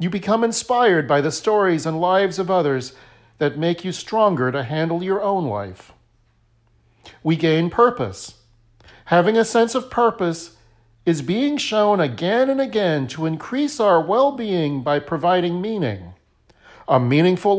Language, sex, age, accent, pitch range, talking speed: English, male, 50-69, American, 145-220 Hz, 145 wpm